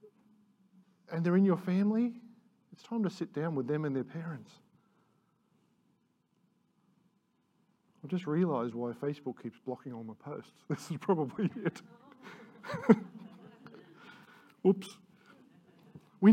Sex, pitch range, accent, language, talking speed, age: male, 150-205 Hz, Australian, English, 115 wpm, 50-69